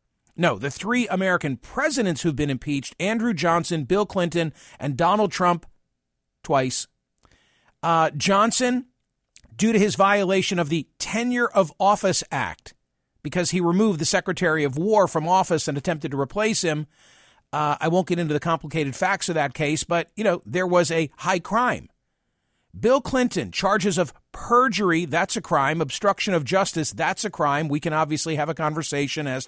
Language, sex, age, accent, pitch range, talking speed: English, male, 50-69, American, 150-195 Hz, 165 wpm